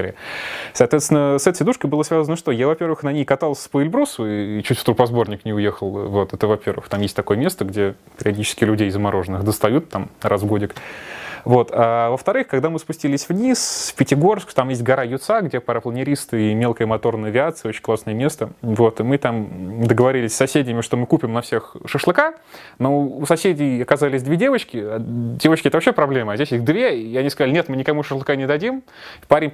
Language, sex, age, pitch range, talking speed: Russian, male, 20-39, 115-160 Hz, 195 wpm